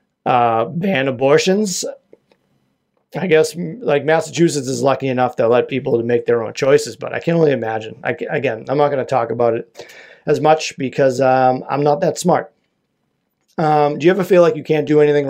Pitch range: 130-155 Hz